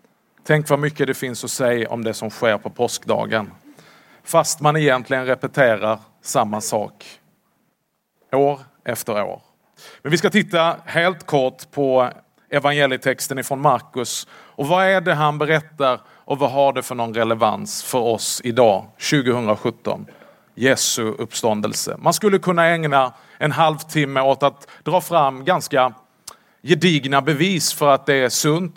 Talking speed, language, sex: 145 wpm, Swedish, male